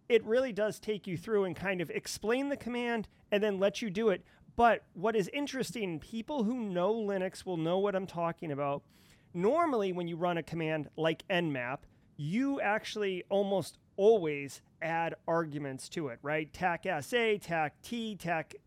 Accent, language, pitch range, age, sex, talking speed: American, English, 170-220 Hz, 30-49, male, 175 wpm